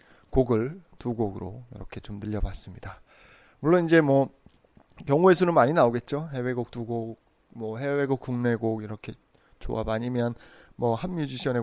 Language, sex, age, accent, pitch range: Korean, male, 20-39, native, 110-150 Hz